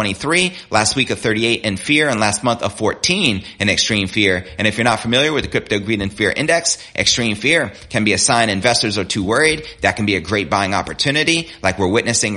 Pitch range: 100-130 Hz